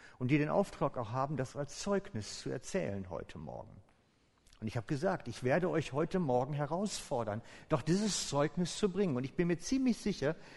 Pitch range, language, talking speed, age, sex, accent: 120-160 Hz, German, 195 wpm, 50-69, male, German